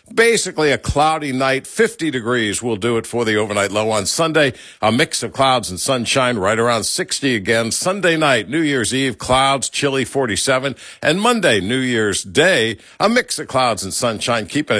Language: English